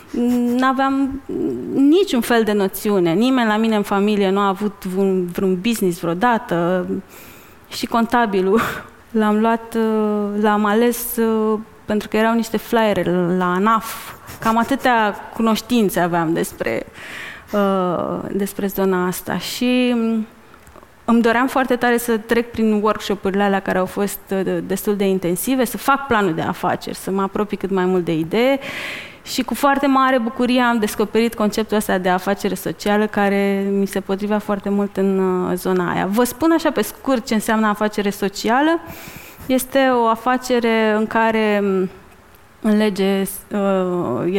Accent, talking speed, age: native, 150 wpm, 20-39